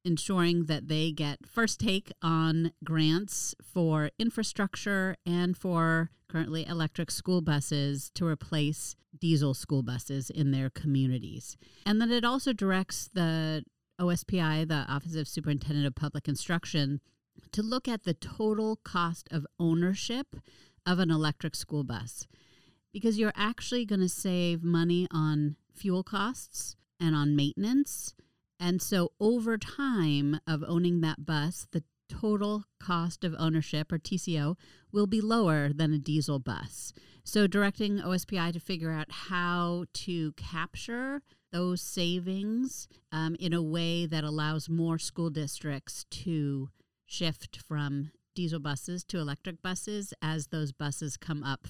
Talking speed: 140 wpm